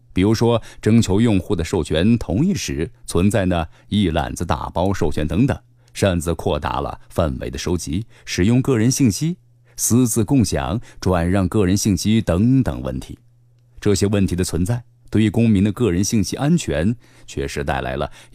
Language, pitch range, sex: Chinese, 85-120 Hz, male